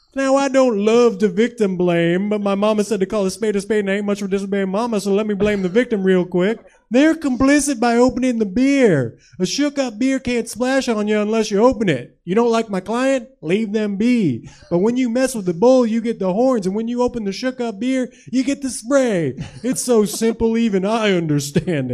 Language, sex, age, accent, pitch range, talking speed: English, male, 30-49, American, 185-245 Hz, 235 wpm